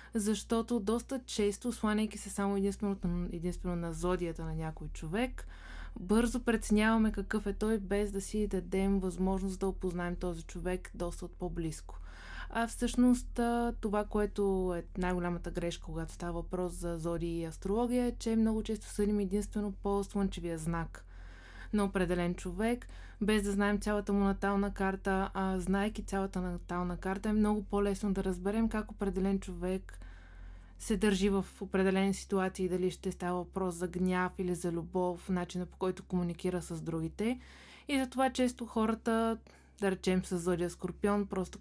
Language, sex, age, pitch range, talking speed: Bulgarian, female, 20-39, 180-215 Hz, 155 wpm